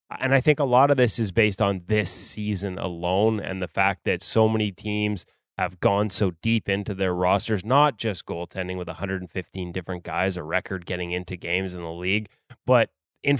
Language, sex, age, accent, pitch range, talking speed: English, male, 20-39, American, 95-125 Hz, 195 wpm